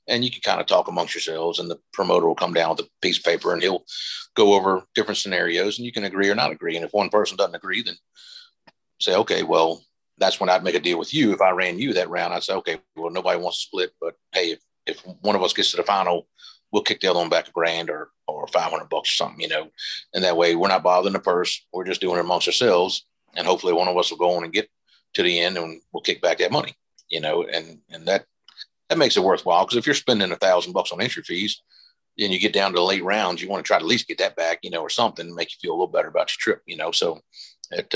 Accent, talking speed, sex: American, 285 wpm, male